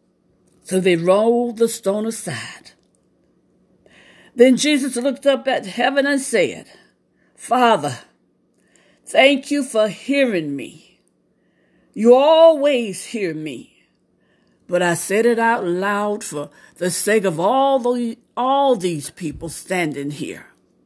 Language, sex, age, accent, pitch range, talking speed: English, female, 60-79, American, 190-270 Hz, 120 wpm